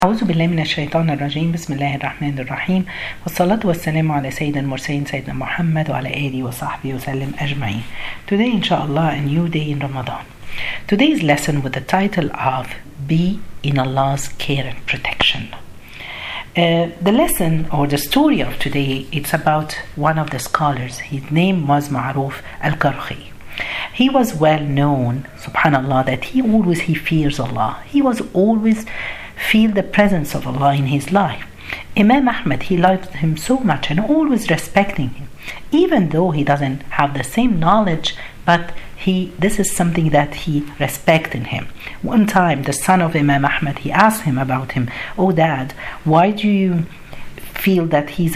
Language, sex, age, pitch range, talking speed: Arabic, female, 50-69, 140-185 Hz, 135 wpm